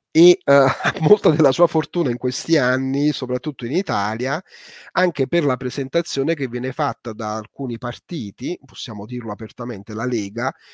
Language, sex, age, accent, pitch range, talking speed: Italian, male, 30-49, native, 120-140 Hz, 155 wpm